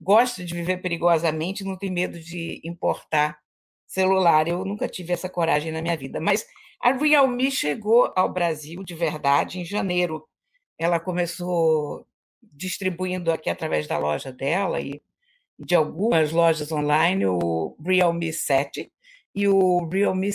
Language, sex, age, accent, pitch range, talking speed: Portuguese, female, 50-69, Brazilian, 165-230 Hz, 140 wpm